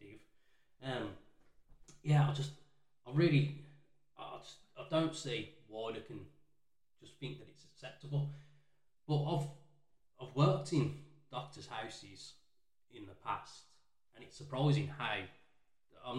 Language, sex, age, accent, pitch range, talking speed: English, male, 20-39, British, 100-145 Hz, 115 wpm